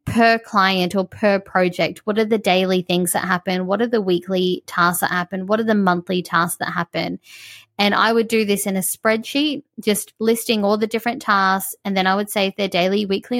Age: 20-39